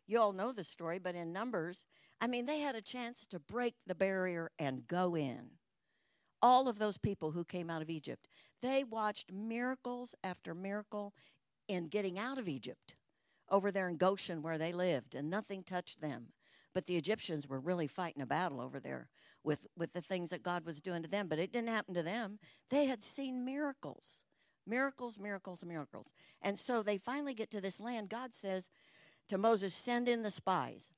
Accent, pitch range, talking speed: American, 170-225 Hz, 195 wpm